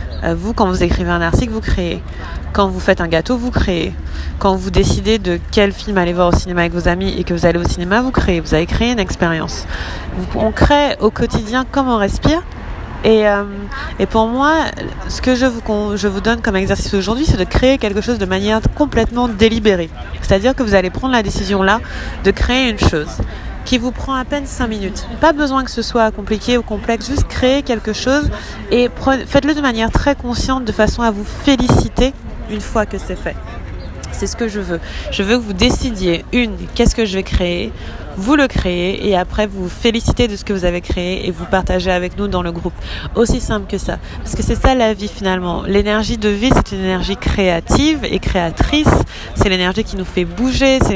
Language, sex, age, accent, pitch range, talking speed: French, female, 30-49, French, 180-240 Hz, 215 wpm